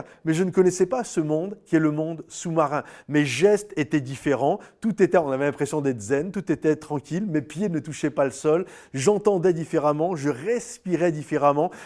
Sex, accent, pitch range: male, French, 140-185 Hz